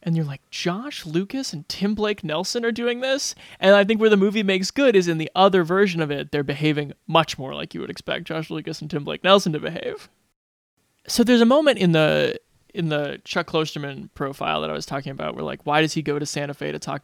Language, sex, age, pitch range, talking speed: English, male, 20-39, 145-180 Hz, 245 wpm